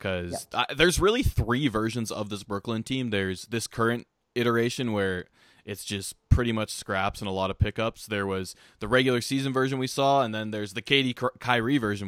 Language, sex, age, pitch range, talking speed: English, male, 20-39, 100-125 Hz, 205 wpm